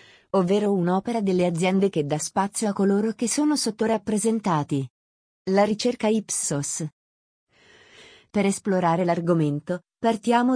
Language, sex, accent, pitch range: Italian, female, native, 180-220 Hz